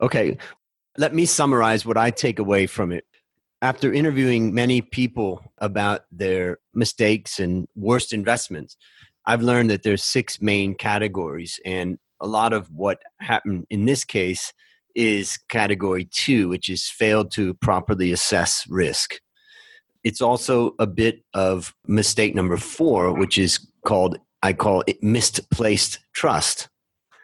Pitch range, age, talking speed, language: 100-125 Hz, 40-59, 135 wpm, English